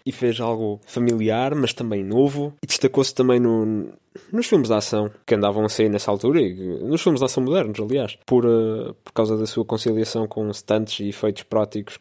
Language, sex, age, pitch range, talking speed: Portuguese, male, 20-39, 100-120 Hz, 200 wpm